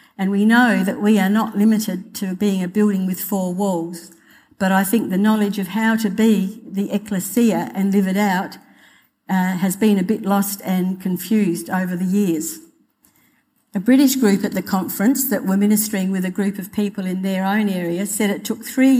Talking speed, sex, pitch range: 200 wpm, female, 195-240 Hz